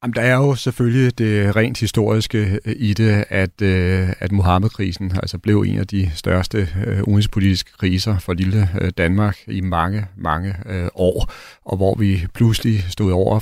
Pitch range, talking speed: 95-110 Hz, 165 wpm